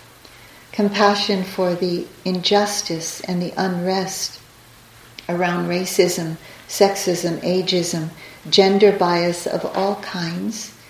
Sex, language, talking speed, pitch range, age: female, English, 90 wpm, 170-195 Hz, 50-69